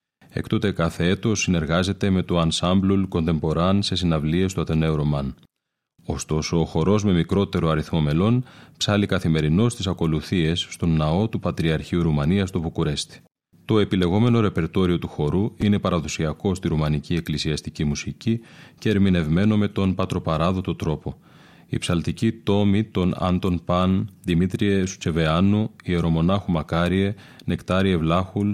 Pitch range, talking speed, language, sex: 80-100 Hz, 130 wpm, Greek, male